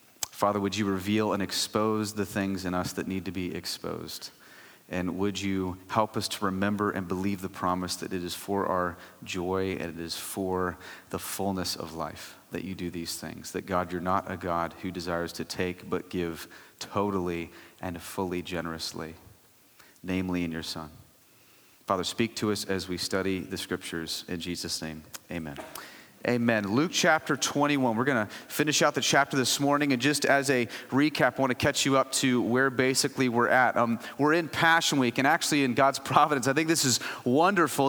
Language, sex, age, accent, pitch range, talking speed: English, male, 30-49, American, 95-145 Hz, 195 wpm